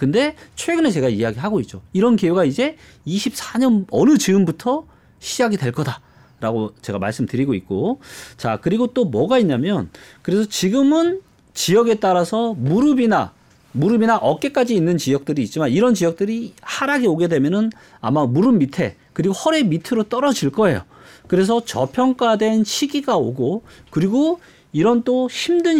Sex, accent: male, native